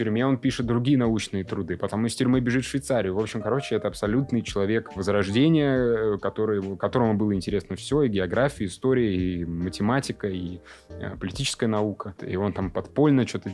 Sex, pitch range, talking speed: male, 95-120 Hz, 170 wpm